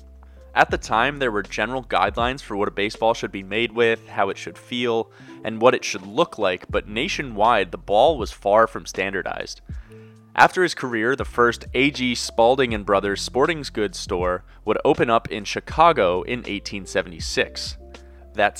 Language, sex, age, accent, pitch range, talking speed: English, male, 20-39, American, 95-120 Hz, 170 wpm